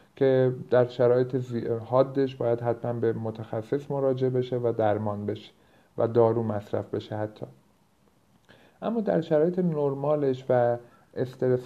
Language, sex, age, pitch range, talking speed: Persian, male, 50-69, 115-140 Hz, 125 wpm